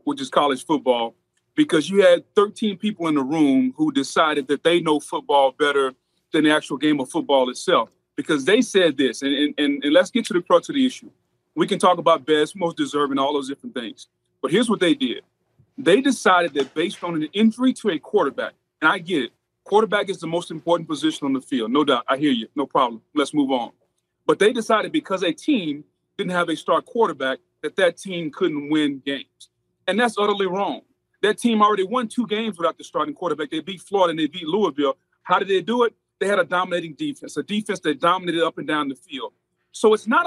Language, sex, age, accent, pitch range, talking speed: English, male, 30-49, American, 155-240 Hz, 225 wpm